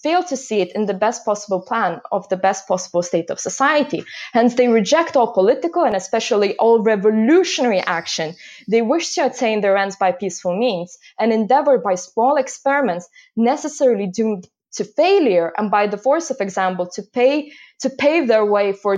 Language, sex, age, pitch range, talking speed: English, female, 20-39, 195-250 Hz, 180 wpm